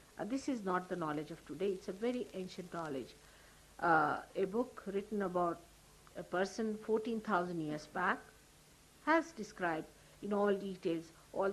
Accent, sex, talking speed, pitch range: Indian, female, 150 wpm, 175-250 Hz